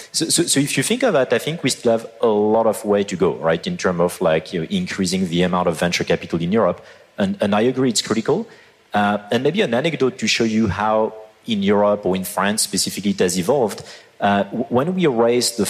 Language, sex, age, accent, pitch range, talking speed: German, male, 30-49, French, 90-125 Hz, 240 wpm